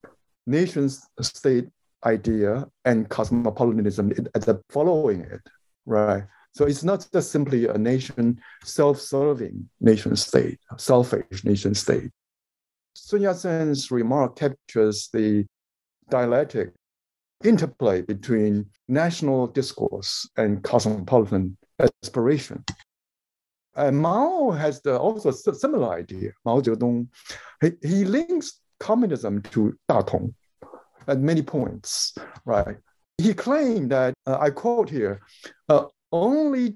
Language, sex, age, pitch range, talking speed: English, male, 60-79, 110-160 Hz, 100 wpm